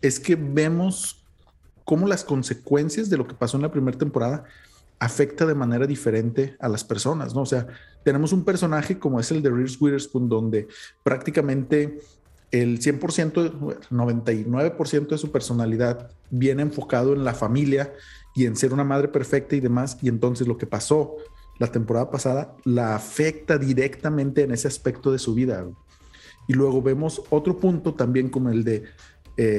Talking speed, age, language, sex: 165 wpm, 40-59, Spanish, male